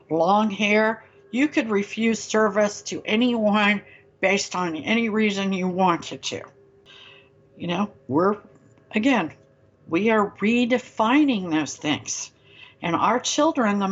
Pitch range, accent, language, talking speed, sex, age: 150-235 Hz, American, English, 120 wpm, female, 60-79